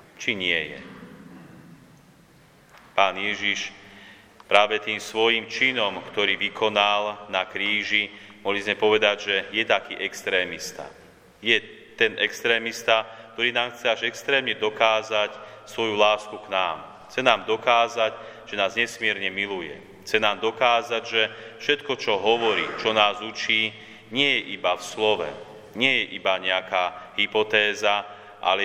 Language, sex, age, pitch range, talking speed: Slovak, male, 30-49, 100-110 Hz, 130 wpm